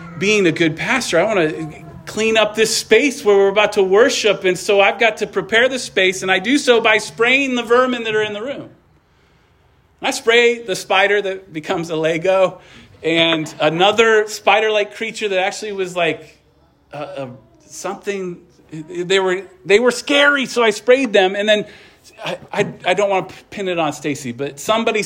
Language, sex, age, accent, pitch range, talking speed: English, male, 40-59, American, 160-220 Hz, 190 wpm